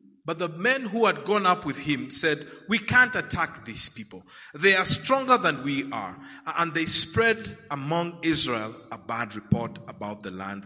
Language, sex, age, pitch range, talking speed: English, male, 50-69, 140-205 Hz, 180 wpm